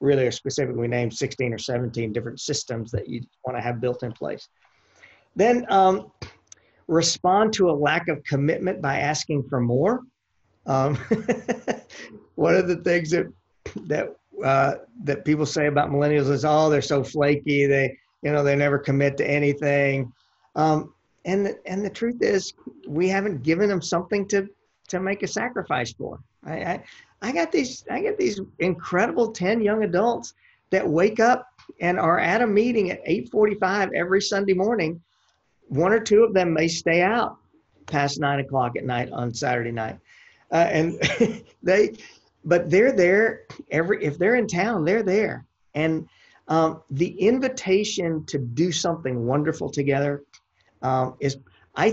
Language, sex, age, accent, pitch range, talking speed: English, male, 50-69, American, 140-195 Hz, 160 wpm